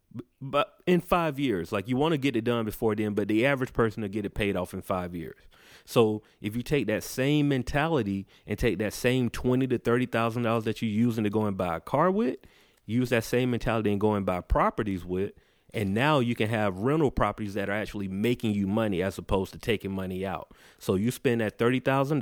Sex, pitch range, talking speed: male, 100-120 Hz, 230 wpm